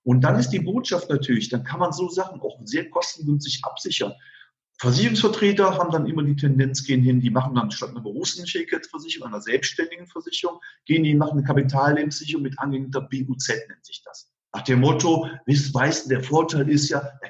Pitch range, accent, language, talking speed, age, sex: 130-165 Hz, German, German, 185 wpm, 40-59, male